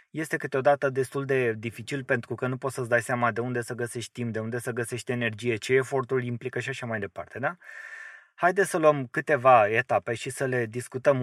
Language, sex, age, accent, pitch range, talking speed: English, male, 20-39, Romanian, 120-145 Hz, 205 wpm